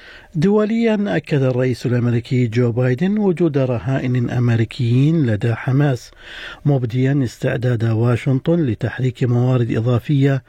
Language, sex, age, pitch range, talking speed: Arabic, male, 50-69, 120-135 Hz, 95 wpm